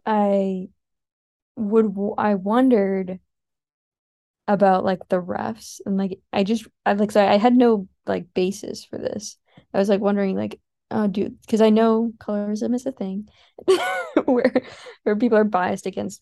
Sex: female